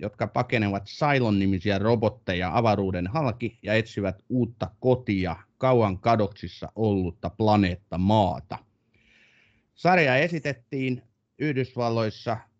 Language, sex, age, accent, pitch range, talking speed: Finnish, male, 30-49, native, 100-125 Hz, 85 wpm